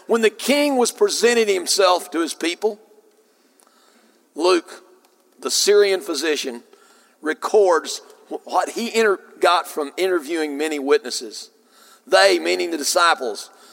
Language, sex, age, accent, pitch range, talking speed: English, male, 50-69, American, 165-250 Hz, 110 wpm